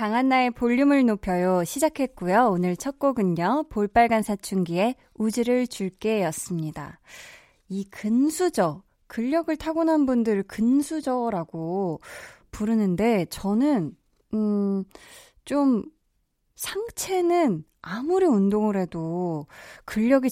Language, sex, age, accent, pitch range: Korean, female, 20-39, native, 180-270 Hz